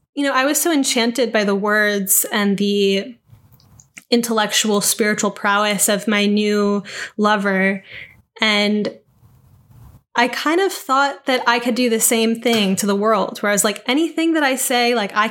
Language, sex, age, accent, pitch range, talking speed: English, female, 10-29, American, 210-255 Hz, 170 wpm